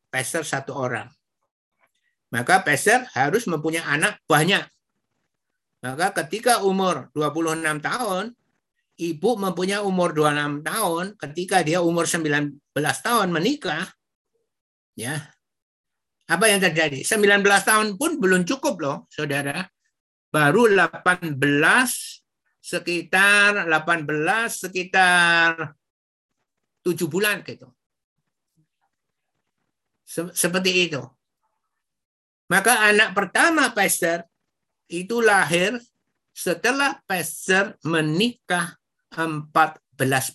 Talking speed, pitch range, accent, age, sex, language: 85 wpm, 155-200 Hz, native, 50-69, male, Indonesian